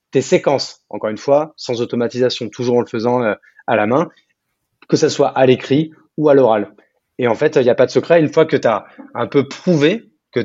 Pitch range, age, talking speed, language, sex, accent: 120-150 Hz, 20-39, 240 wpm, French, male, French